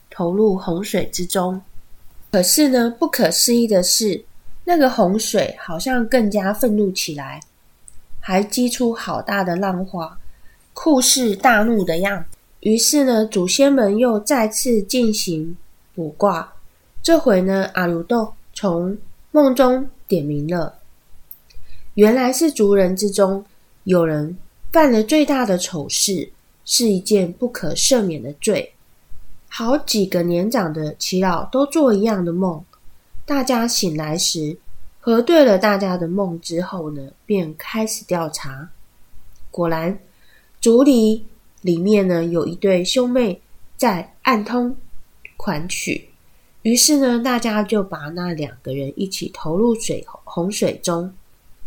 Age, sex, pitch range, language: 20-39, female, 170-235 Hz, Chinese